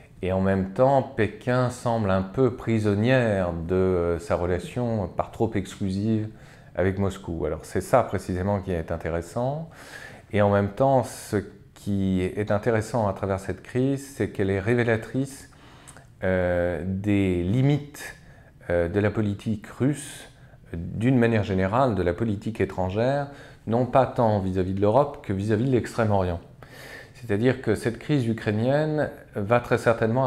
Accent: French